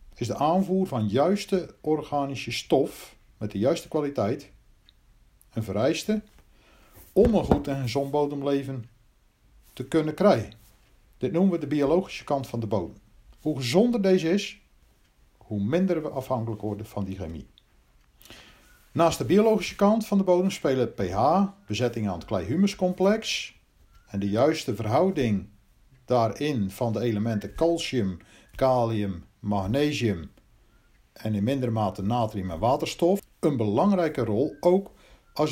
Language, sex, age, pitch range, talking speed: Dutch, male, 50-69, 105-175 Hz, 135 wpm